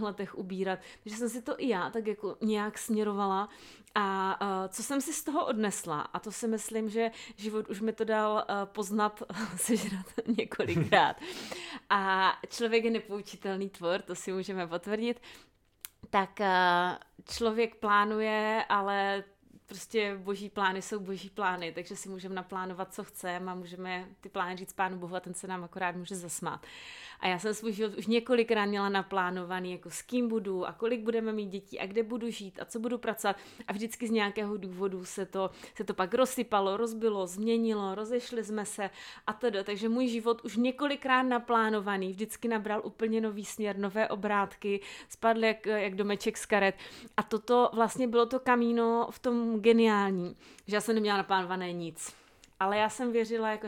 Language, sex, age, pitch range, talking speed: Czech, female, 30-49, 195-230 Hz, 170 wpm